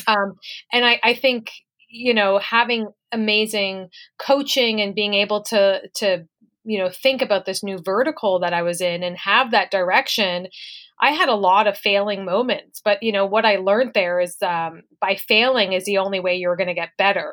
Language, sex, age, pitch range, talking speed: English, female, 30-49, 195-235 Hz, 195 wpm